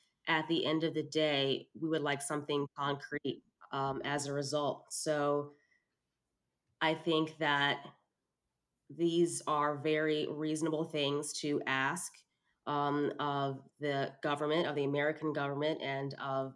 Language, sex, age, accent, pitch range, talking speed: English, female, 20-39, American, 135-155 Hz, 130 wpm